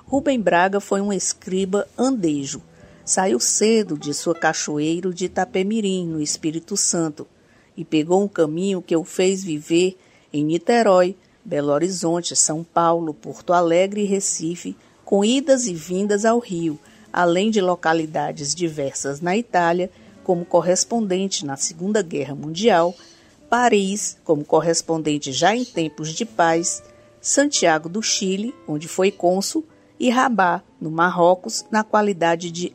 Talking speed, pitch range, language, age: 135 wpm, 165-210 Hz, Portuguese, 50-69